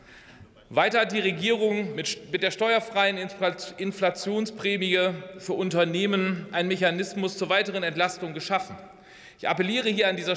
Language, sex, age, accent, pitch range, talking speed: German, male, 40-59, German, 160-200 Hz, 120 wpm